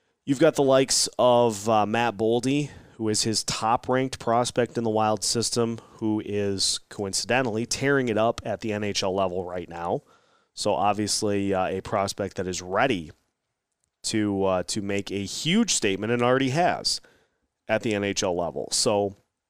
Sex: male